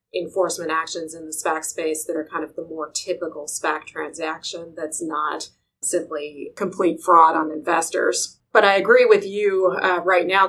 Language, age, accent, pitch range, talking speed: English, 30-49, American, 160-185 Hz, 170 wpm